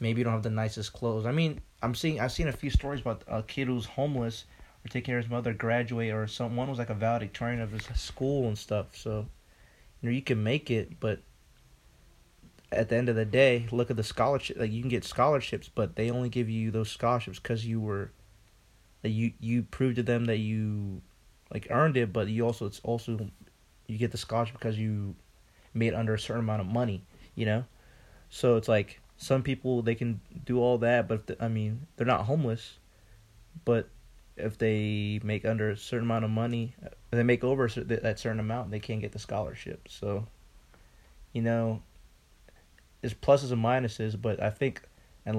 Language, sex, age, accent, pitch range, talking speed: English, male, 20-39, American, 105-120 Hz, 205 wpm